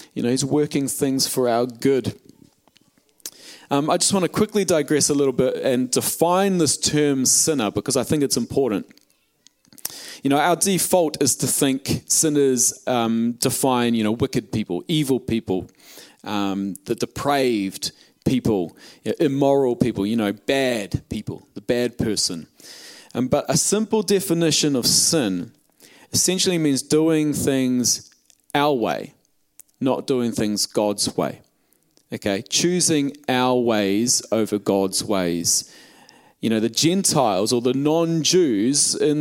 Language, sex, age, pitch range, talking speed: English, male, 30-49, 115-145 Hz, 140 wpm